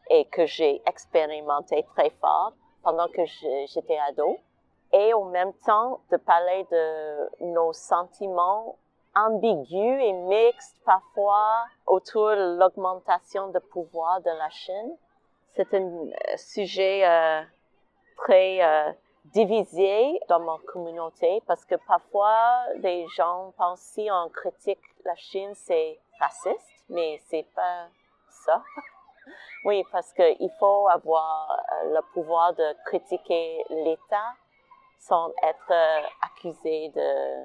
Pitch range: 170-215 Hz